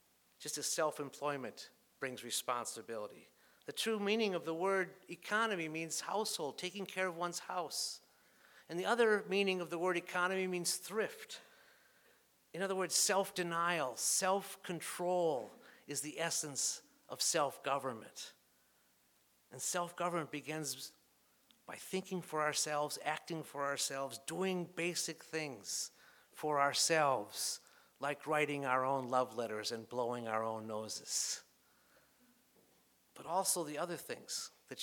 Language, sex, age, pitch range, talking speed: English, male, 50-69, 135-180 Hz, 120 wpm